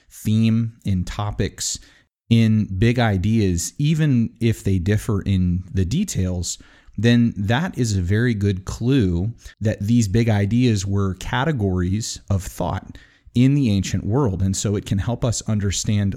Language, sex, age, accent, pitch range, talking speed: English, male, 30-49, American, 95-115 Hz, 145 wpm